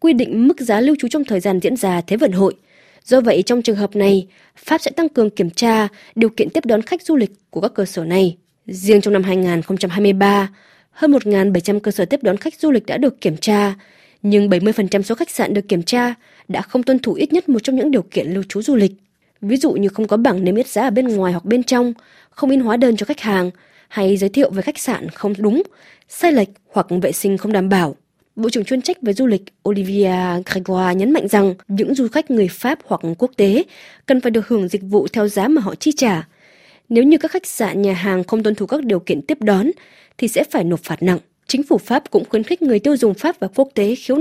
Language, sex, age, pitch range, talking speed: Vietnamese, female, 20-39, 195-260 Hz, 250 wpm